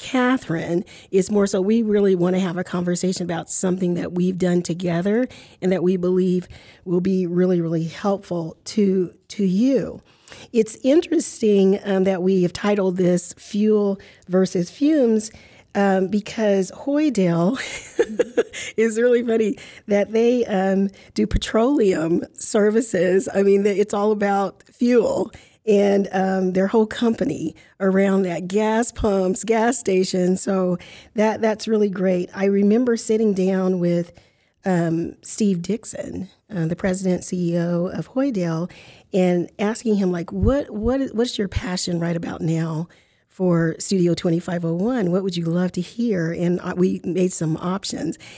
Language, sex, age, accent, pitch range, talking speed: English, female, 40-59, American, 175-210 Hz, 150 wpm